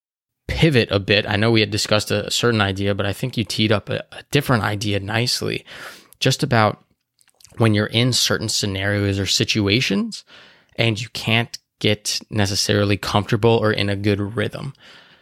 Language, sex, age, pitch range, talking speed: English, male, 20-39, 105-120 Hz, 165 wpm